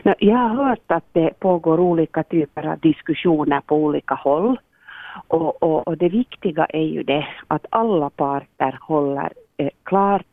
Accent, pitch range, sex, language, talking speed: Finnish, 150-200 Hz, female, Swedish, 155 wpm